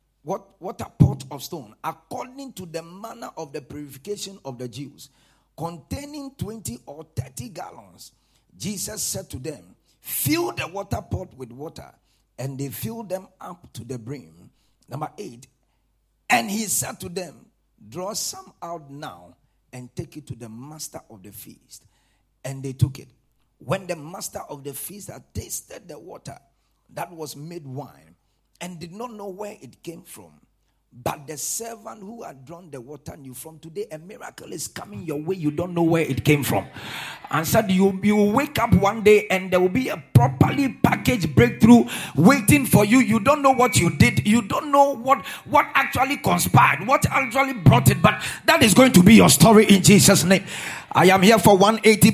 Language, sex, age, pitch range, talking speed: English, male, 50-69, 135-210 Hz, 185 wpm